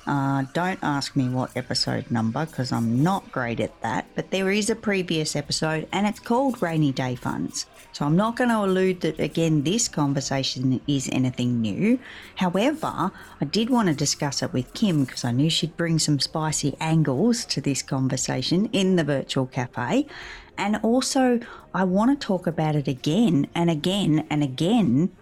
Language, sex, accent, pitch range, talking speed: English, female, Australian, 140-210 Hz, 180 wpm